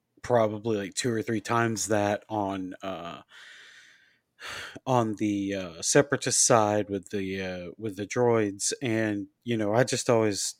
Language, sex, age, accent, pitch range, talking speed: English, male, 30-49, American, 100-130 Hz, 145 wpm